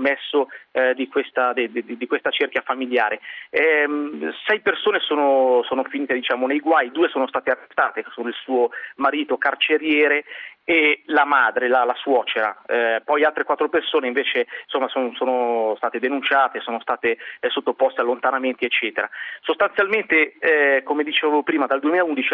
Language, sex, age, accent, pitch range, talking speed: Italian, male, 30-49, native, 130-155 Hz, 155 wpm